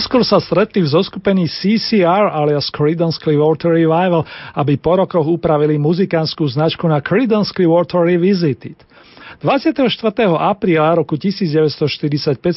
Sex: male